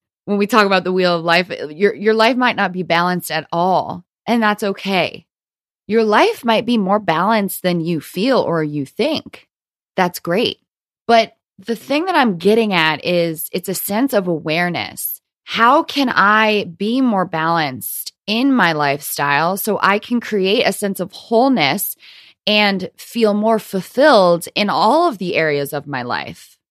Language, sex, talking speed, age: English, female, 170 wpm, 20-39